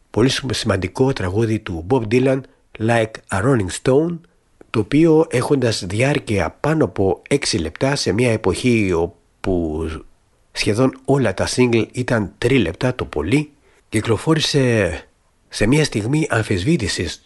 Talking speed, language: 125 wpm, Greek